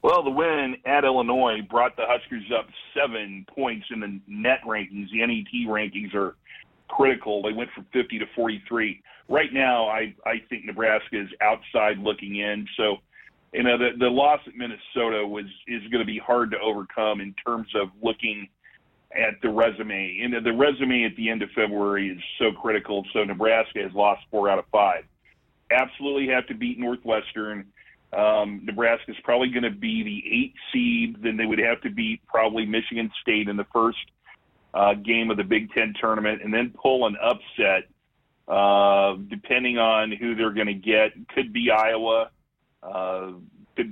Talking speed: 175 wpm